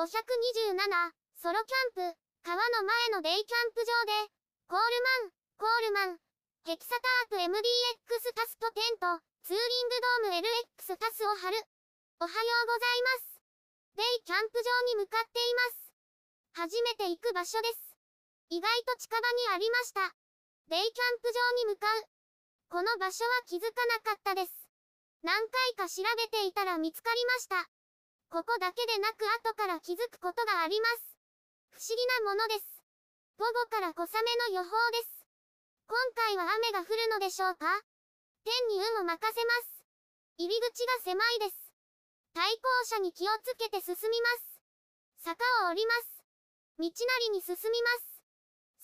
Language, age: Japanese, 20-39